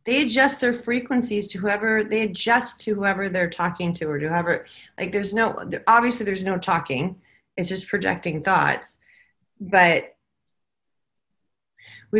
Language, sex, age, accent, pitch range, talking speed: English, female, 30-49, American, 170-210 Hz, 145 wpm